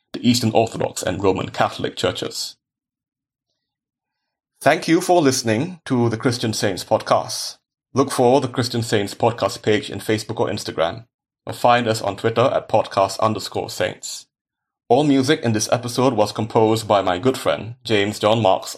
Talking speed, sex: 160 wpm, male